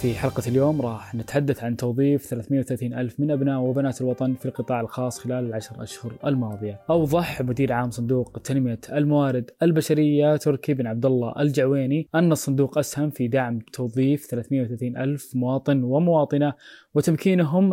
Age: 20-39